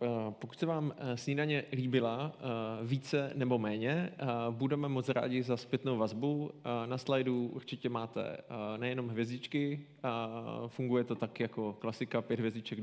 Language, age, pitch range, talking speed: Czech, 20-39, 115-135 Hz, 125 wpm